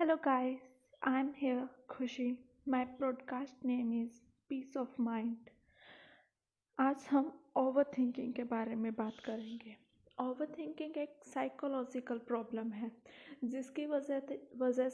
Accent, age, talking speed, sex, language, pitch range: native, 20-39, 115 wpm, female, Hindi, 245-285 Hz